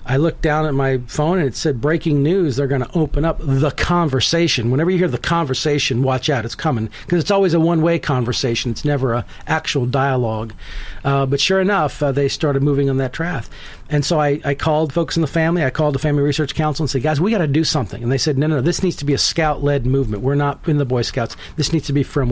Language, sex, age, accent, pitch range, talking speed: English, male, 40-59, American, 135-160 Hz, 260 wpm